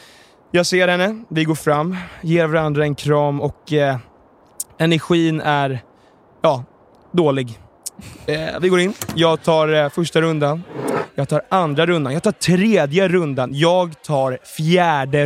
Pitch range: 135-165 Hz